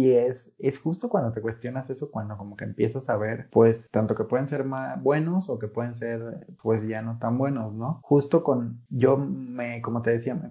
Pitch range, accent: 115-135 Hz, Mexican